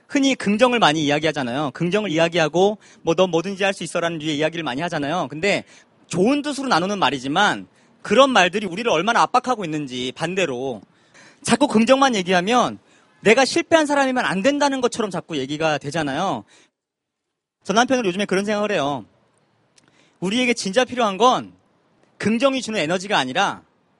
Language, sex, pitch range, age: Korean, male, 175-250 Hz, 40-59